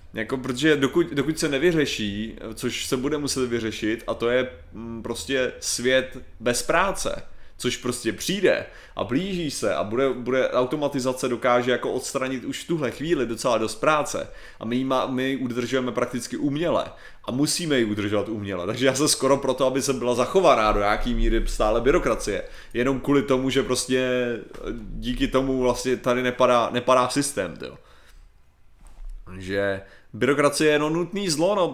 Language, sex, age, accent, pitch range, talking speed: Czech, male, 30-49, native, 120-145 Hz, 155 wpm